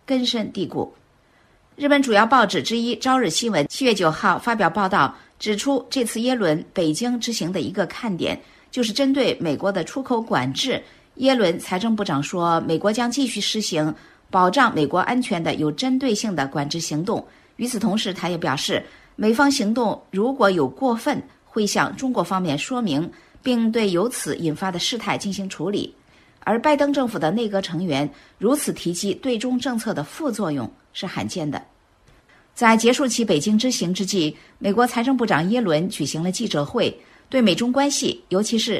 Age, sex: 50-69, female